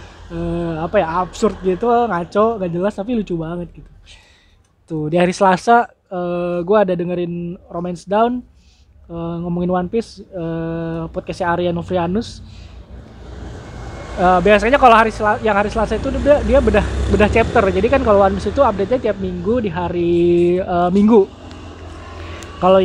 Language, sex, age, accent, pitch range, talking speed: Indonesian, male, 20-39, native, 160-200 Hz, 150 wpm